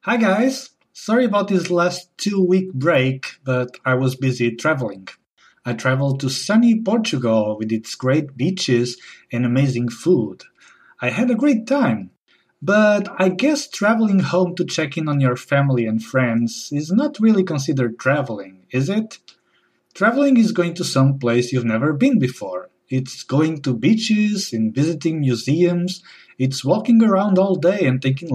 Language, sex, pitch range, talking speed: English, male, 130-200 Hz, 155 wpm